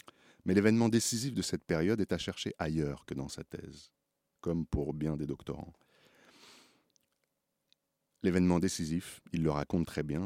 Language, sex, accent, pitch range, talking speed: French, male, French, 75-95 Hz, 150 wpm